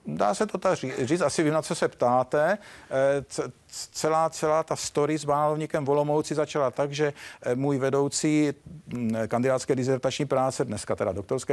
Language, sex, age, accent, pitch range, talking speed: Czech, male, 50-69, native, 125-155 Hz, 145 wpm